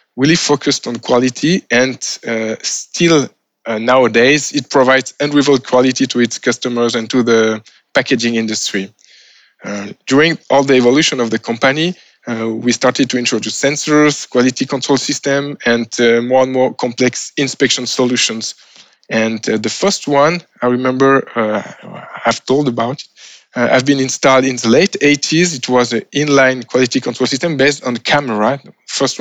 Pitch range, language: 120-140 Hz, English